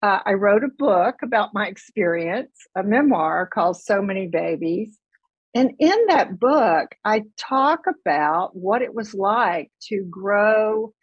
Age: 50-69